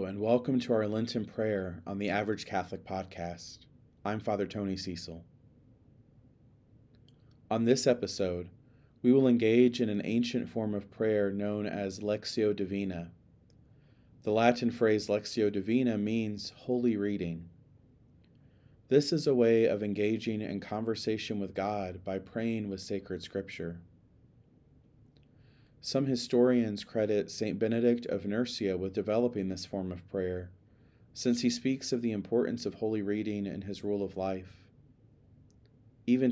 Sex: male